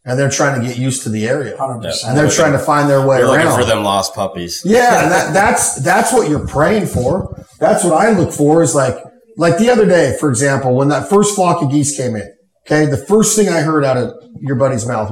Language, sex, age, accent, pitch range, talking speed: English, male, 30-49, American, 125-170 Hz, 245 wpm